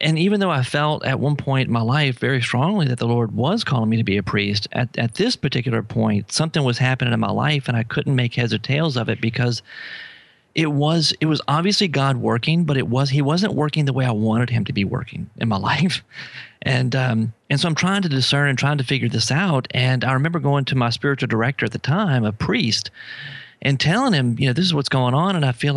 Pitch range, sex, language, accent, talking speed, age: 120-150 Hz, male, English, American, 250 wpm, 40-59